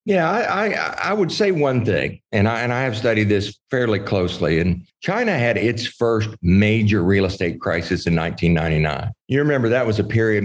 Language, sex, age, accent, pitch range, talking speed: English, male, 50-69, American, 90-120 Hz, 195 wpm